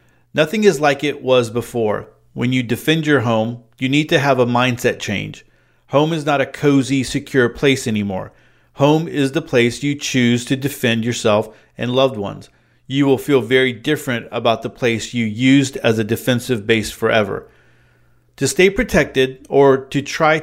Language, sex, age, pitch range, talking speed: English, male, 40-59, 120-145 Hz, 175 wpm